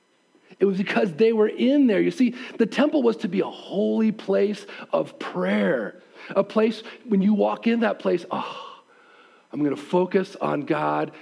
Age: 40-59